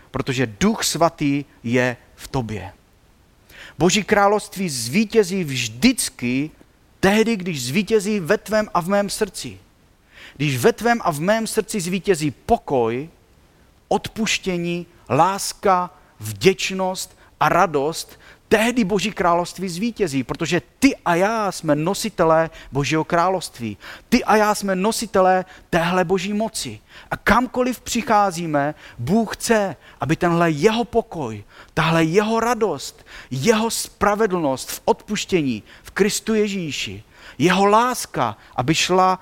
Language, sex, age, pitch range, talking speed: Czech, male, 40-59, 125-195 Hz, 115 wpm